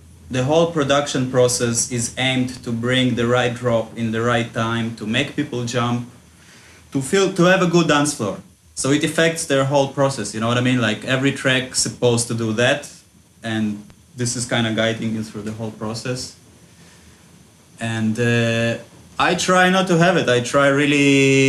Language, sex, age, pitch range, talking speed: English, male, 30-49, 110-130 Hz, 185 wpm